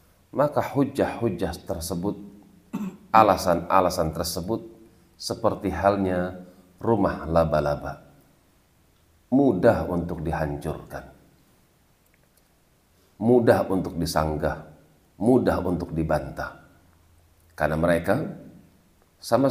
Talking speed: 65 wpm